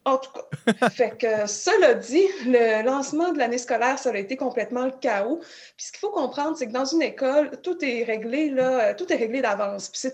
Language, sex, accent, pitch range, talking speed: French, female, Canadian, 235-285 Hz, 190 wpm